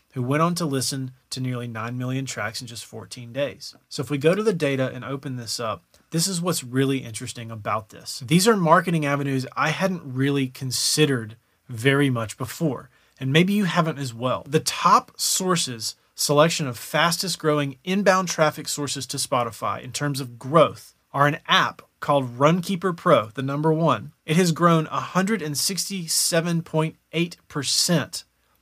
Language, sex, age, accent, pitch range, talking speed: English, male, 30-49, American, 125-160 Hz, 165 wpm